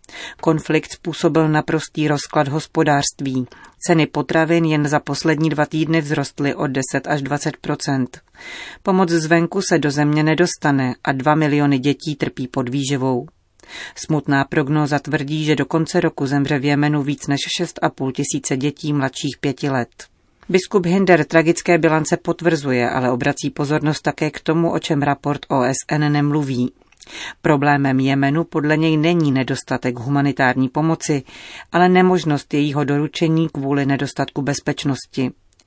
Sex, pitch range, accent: female, 140-160 Hz, native